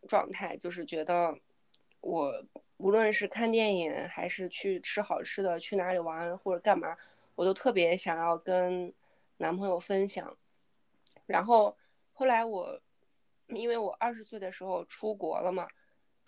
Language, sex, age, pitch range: Chinese, female, 20-39, 180-230 Hz